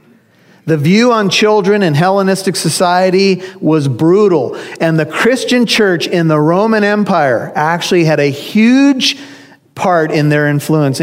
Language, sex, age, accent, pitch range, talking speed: English, male, 40-59, American, 150-205 Hz, 135 wpm